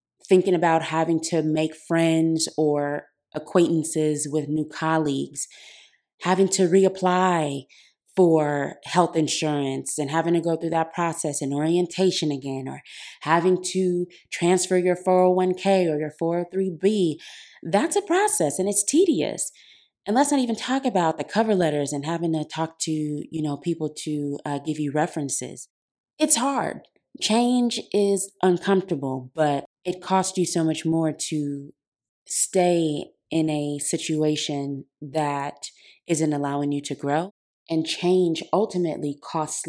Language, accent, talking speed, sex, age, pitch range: English, American, 140 wpm, female, 20-39, 150-185 Hz